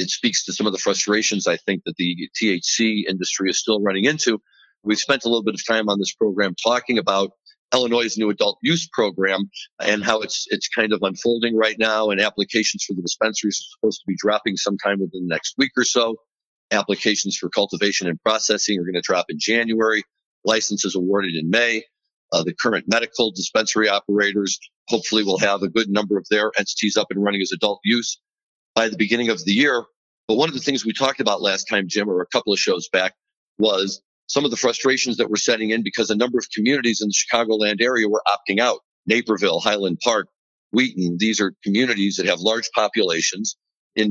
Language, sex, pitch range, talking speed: English, male, 100-115 Hz, 210 wpm